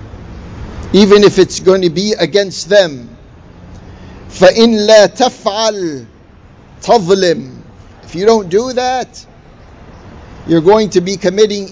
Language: English